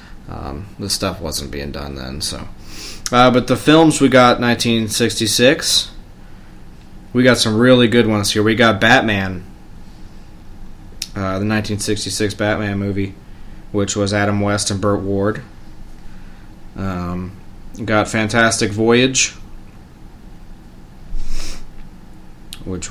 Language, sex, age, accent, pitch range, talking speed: English, male, 20-39, American, 95-110 Hz, 110 wpm